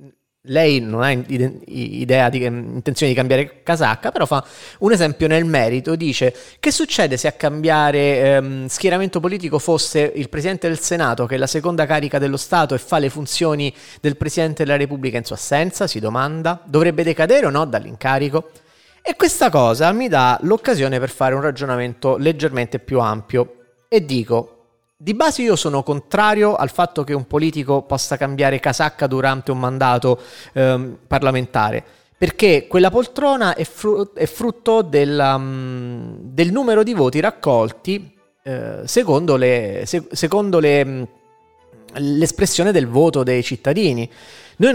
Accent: native